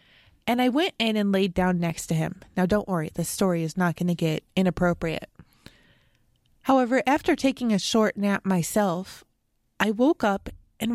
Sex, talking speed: female, 175 wpm